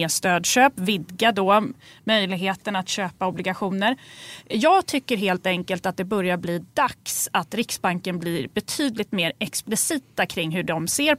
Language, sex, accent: Swedish, female, native